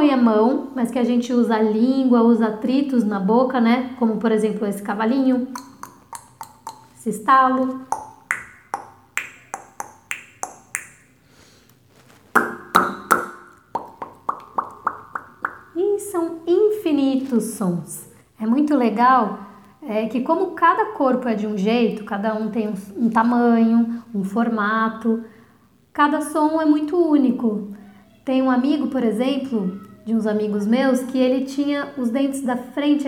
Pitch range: 225-280 Hz